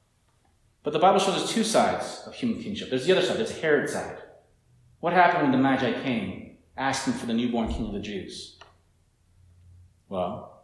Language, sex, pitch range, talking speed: English, male, 90-135 Hz, 180 wpm